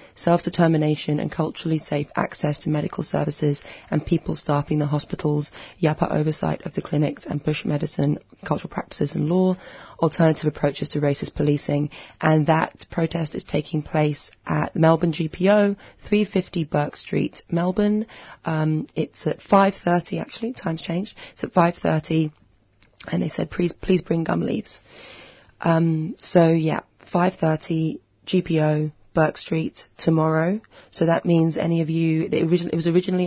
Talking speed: 140 wpm